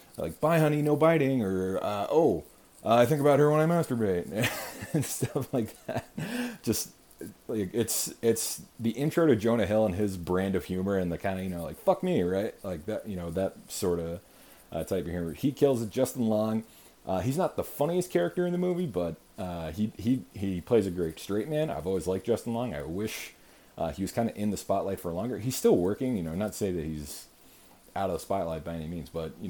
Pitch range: 85-115 Hz